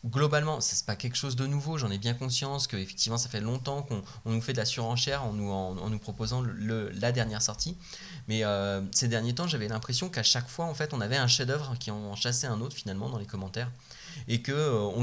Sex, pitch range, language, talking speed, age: male, 110-135 Hz, French, 240 wpm, 20-39